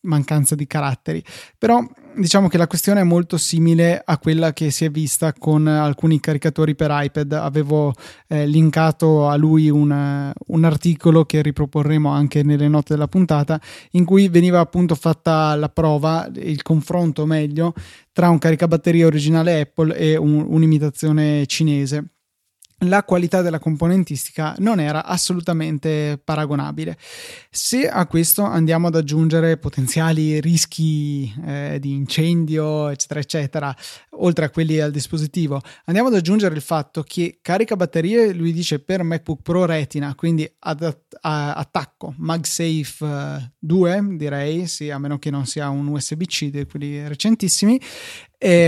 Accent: native